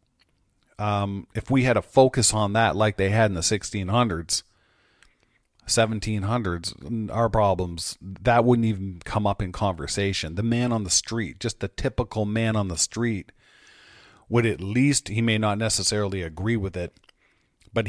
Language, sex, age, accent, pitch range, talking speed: English, male, 40-59, American, 95-115 Hz, 160 wpm